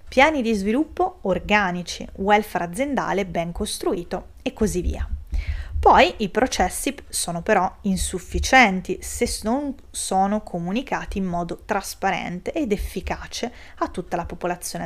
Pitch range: 175-230 Hz